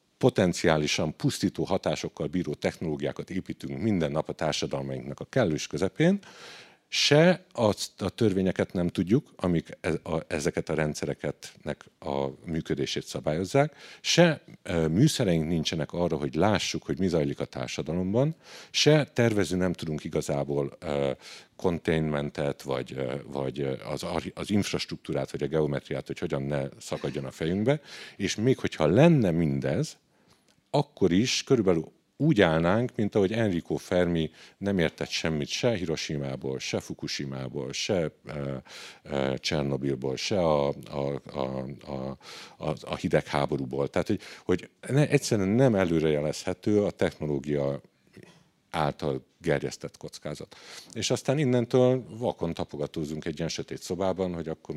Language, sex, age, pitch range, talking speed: Hungarian, male, 50-69, 70-100 Hz, 120 wpm